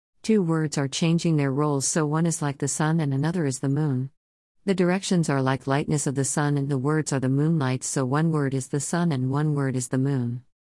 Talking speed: 240 wpm